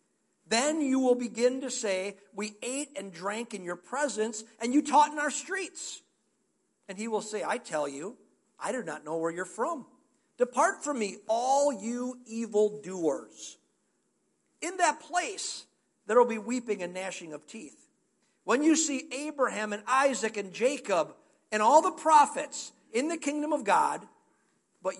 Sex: male